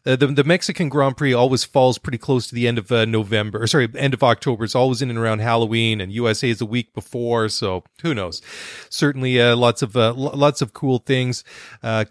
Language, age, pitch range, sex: English, 30-49, 115-140 Hz, male